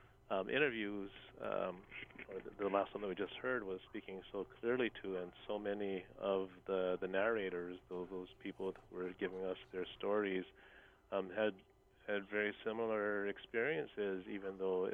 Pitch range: 90-100 Hz